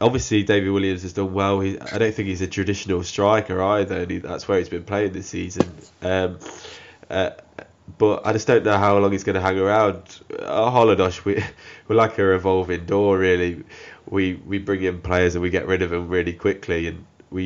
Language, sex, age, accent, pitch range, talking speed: English, male, 10-29, British, 90-100 Hz, 215 wpm